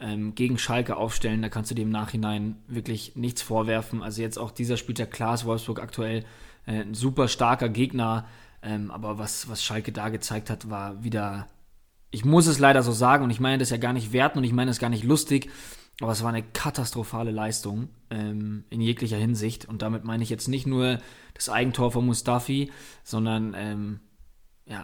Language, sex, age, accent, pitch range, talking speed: German, male, 20-39, German, 110-120 Hz, 185 wpm